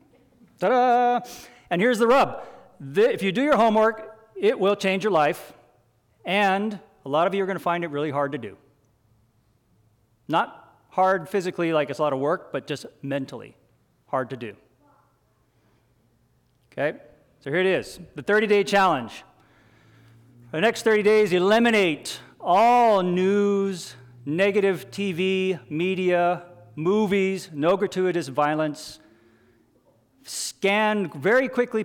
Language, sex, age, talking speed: English, male, 40-59, 130 wpm